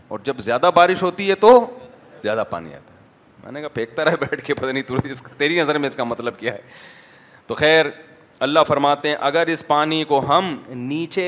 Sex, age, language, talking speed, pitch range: male, 30-49, Urdu, 200 wpm, 120-160 Hz